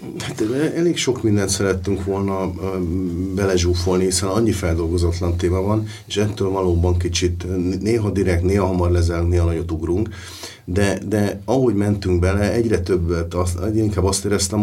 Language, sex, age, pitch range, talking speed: Hungarian, male, 50-69, 90-110 Hz, 145 wpm